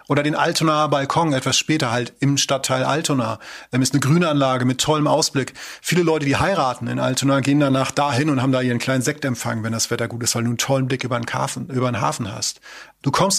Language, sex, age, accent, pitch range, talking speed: German, male, 30-49, German, 125-150 Hz, 230 wpm